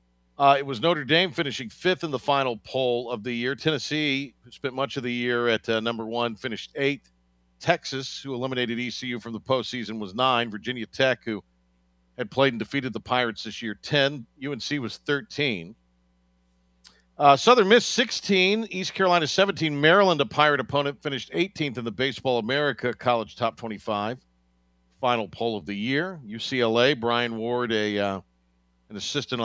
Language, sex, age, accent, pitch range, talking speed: English, male, 50-69, American, 100-145 Hz, 170 wpm